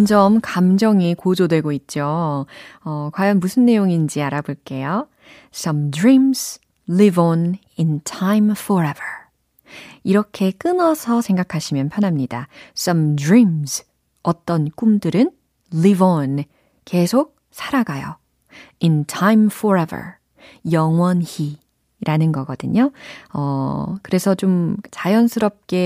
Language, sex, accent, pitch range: Korean, female, native, 155-215 Hz